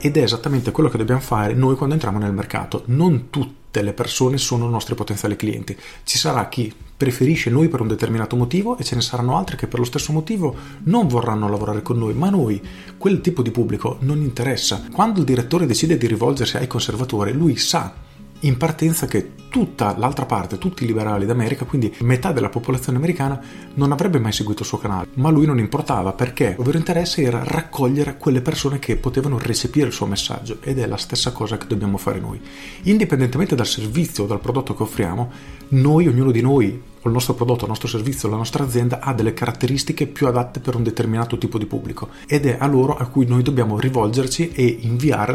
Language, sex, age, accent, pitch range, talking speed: Italian, male, 40-59, native, 110-140 Hz, 205 wpm